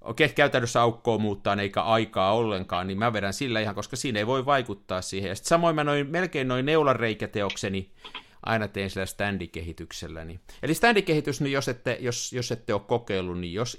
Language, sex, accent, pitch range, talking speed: Finnish, male, native, 100-140 Hz, 175 wpm